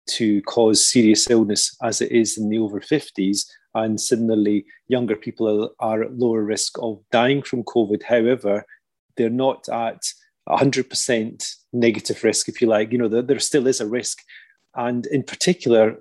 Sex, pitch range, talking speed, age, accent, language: male, 110-125 Hz, 155 wpm, 30-49, British, English